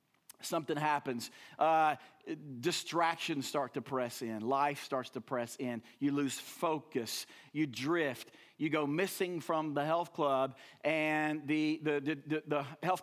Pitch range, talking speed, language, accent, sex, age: 145-190 Hz, 145 wpm, English, American, male, 40-59